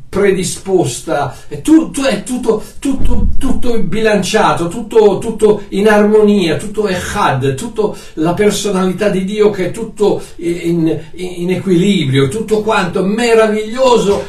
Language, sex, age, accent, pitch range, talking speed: Italian, male, 60-79, native, 160-220 Hz, 120 wpm